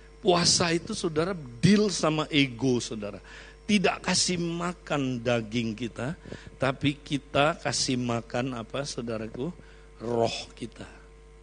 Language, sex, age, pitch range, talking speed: Indonesian, male, 50-69, 130-170 Hz, 105 wpm